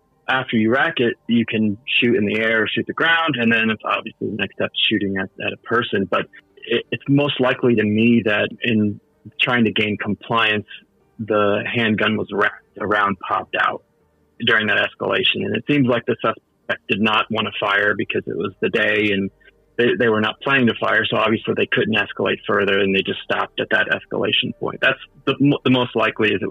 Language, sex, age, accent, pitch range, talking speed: English, male, 30-49, American, 105-120 Hz, 215 wpm